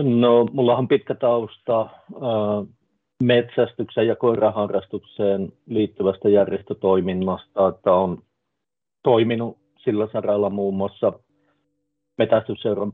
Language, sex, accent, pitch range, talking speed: Finnish, male, native, 95-110 Hz, 85 wpm